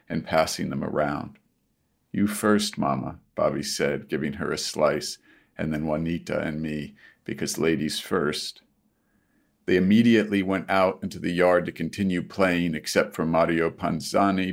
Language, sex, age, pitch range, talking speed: English, male, 40-59, 85-105 Hz, 145 wpm